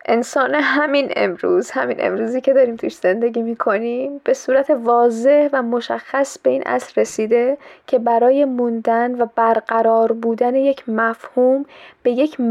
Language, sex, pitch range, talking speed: Persian, female, 220-250 Hz, 145 wpm